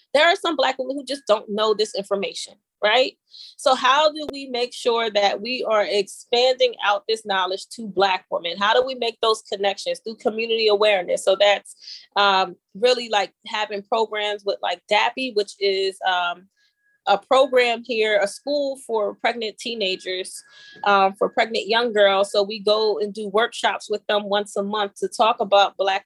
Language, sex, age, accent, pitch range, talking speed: English, female, 20-39, American, 195-235 Hz, 180 wpm